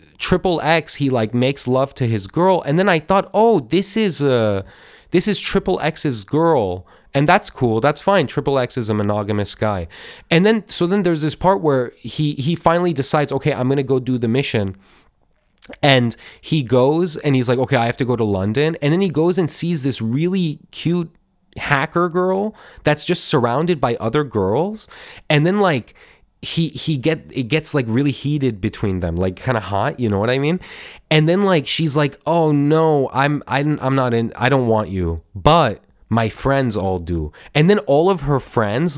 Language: English